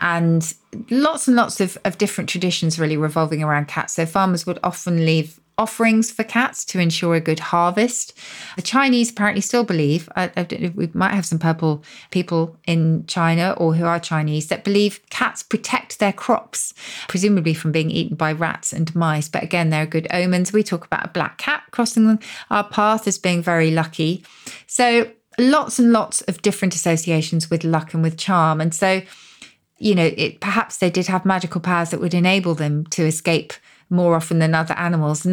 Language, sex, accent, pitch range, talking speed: English, female, British, 160-195 Hz, 190 wpm